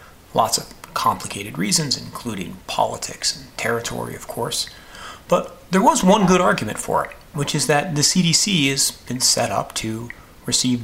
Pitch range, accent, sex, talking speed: 105-170 Hz, American, male, 160 wpm